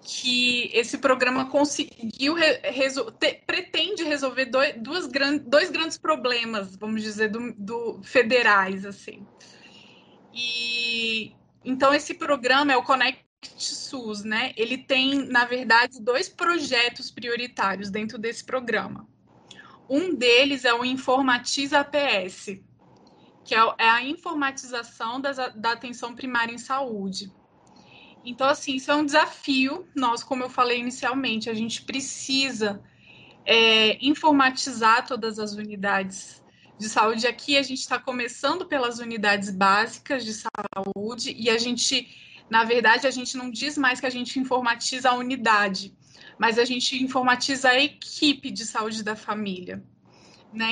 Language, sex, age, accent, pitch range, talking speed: Portuguese, female, 20-39, Brazilian, 225-270 Hz, 135 wpm